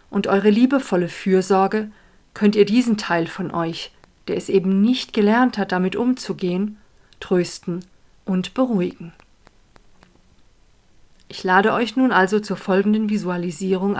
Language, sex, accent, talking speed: German, female, German, 125 wpm